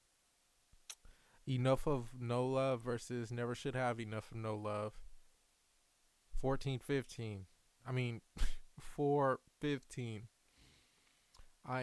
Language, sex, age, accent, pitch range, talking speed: English, male, 20-39, American, 110-130 Hz, 85 wpm